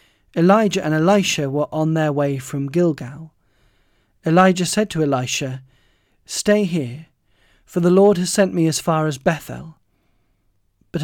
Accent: British